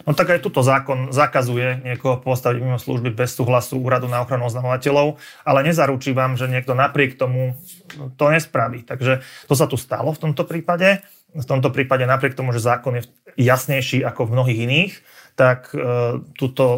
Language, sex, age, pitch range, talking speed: Slovak, male, 30-49, 120-135 Hz, 170 wpm